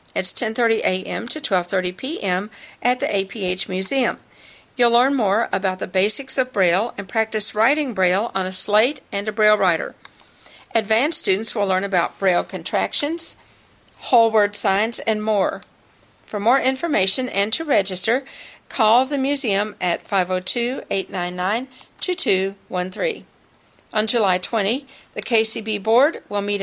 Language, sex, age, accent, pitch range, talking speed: English, female, 50-69, American, 195-250 Hz, 135 wpm